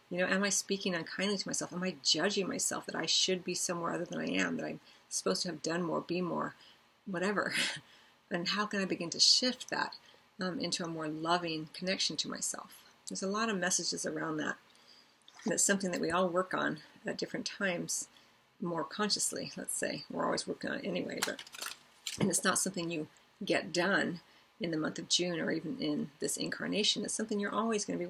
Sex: female